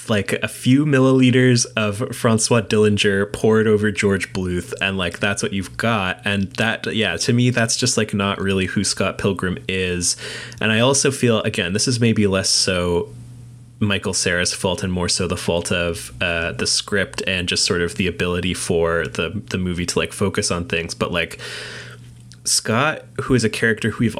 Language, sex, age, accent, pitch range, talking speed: English, male, 20-39, American, 95-115 Hz, 190 wpm